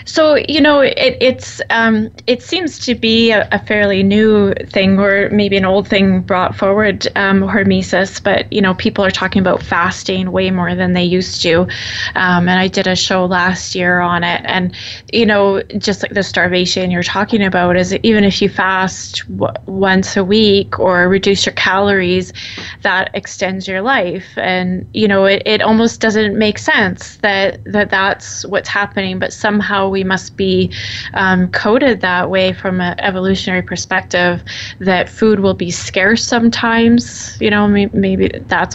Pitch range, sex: 180-205 Hz, female